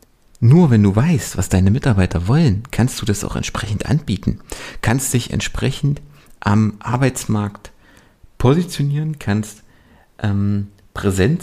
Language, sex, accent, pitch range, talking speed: German, male, German, 95-120 Hz, 120 wpm